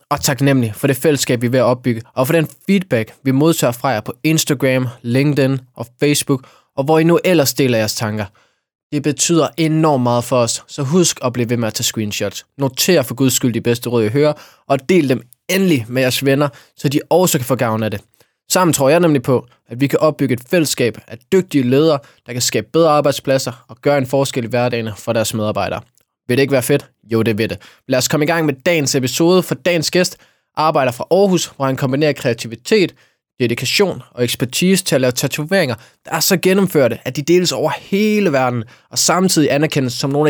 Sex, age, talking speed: male, 20-39, 220 wpm